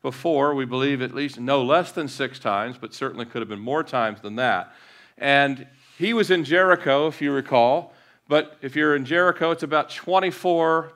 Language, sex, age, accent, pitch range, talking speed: English, male, 40-59, American, 115-145 Hz, 190 wpm